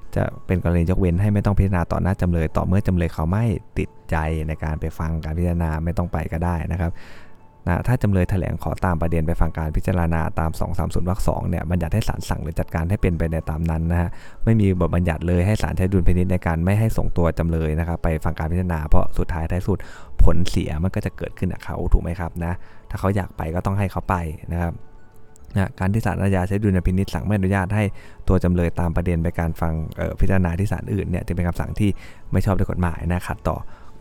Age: 20-39